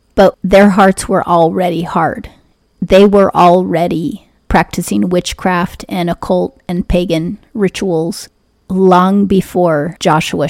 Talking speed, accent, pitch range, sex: 110 wpm, American, 175-190 Hz, female